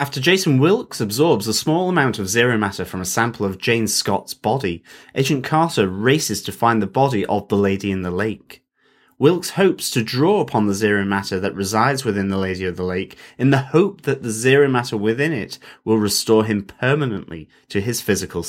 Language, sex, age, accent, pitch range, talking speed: English, male, 30-49, British, 100-140 Hz, 200 wpm